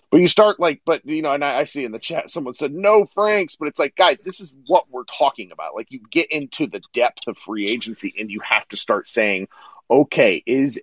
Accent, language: American, English